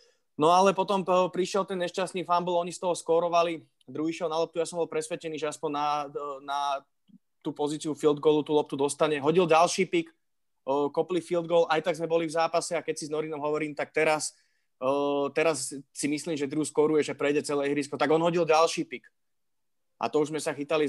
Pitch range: 145-165 Hz